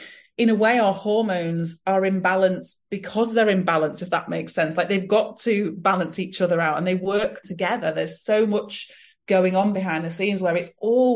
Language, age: English, 30-49